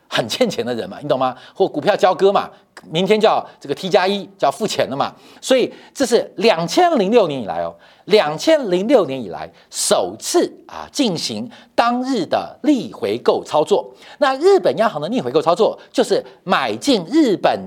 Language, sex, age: Chinese, male, 50-69